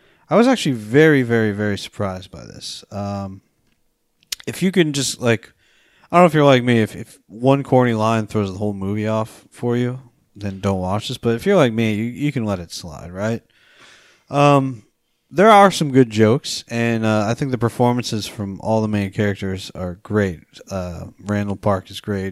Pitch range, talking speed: 100-130 Hz, 200 wpm